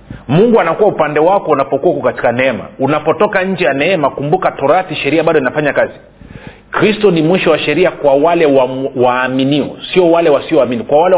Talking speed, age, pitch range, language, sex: 170 wpm, 40-59, 135-175 Hz, Swahili, male